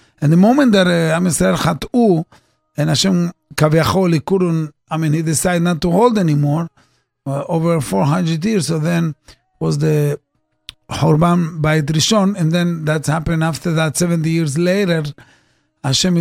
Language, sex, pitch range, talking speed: English, male, 150-175 Hz, 145 wpm